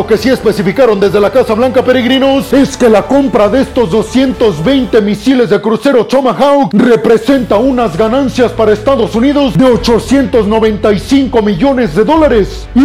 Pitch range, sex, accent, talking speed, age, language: 215-265 Hz, male, Mexican, 145 wpm, 40-59, Spanish